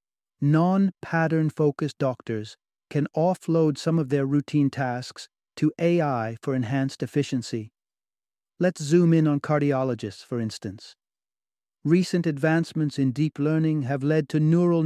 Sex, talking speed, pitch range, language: male, 120 wpm, 140-160 Hz, English